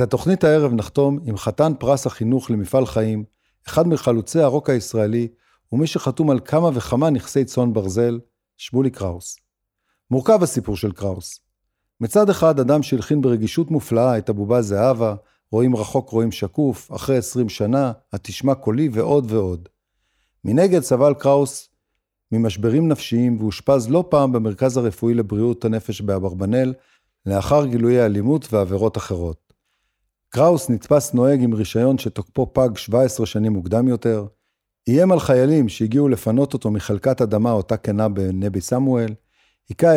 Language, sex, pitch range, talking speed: Hebrew, male, 110-140 Hz, 135 wpm